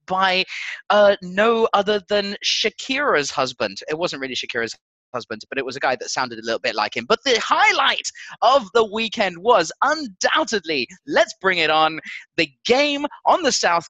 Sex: male